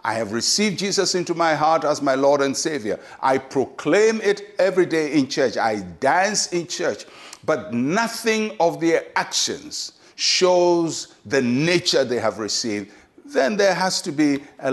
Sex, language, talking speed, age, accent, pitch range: male, English, 165 wpm, 60-79, Nigerian, 115-175 Hz